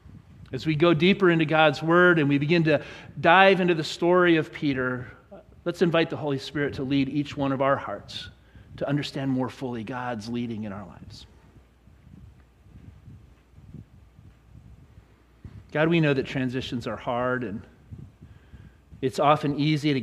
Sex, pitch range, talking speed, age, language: male, 115-150 Hz, 150 wpm, 40-59, English